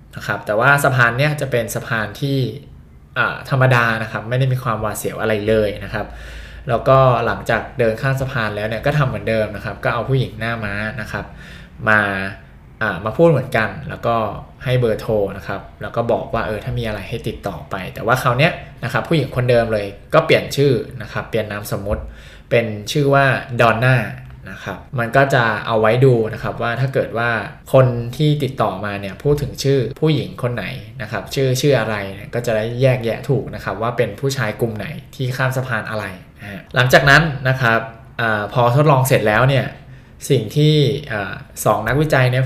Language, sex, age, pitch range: Thai, male, 20-39, 110-135 Hz